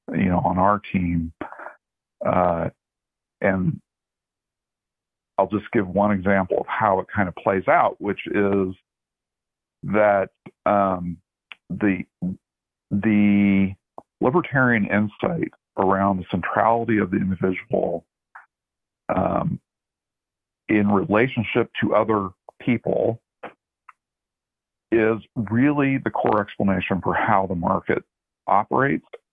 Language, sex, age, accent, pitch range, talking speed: English, male, 50-69, American, 95-105 Hz, 100 wpm